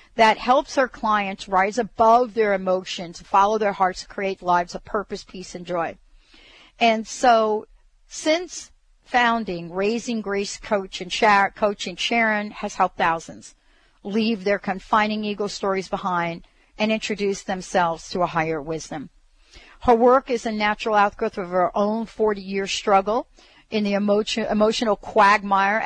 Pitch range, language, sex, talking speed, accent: 190-230 Hz, English, female, 135 wpm, American